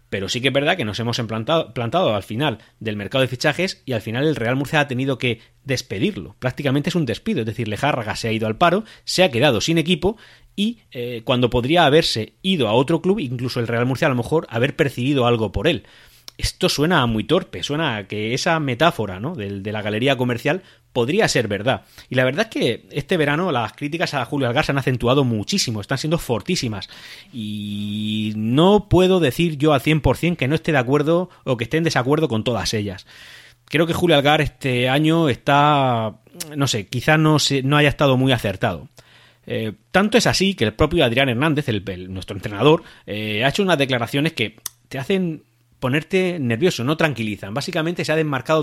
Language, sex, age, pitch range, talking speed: Spanish, male, 30-49, 115-160 Hz, 200 wpm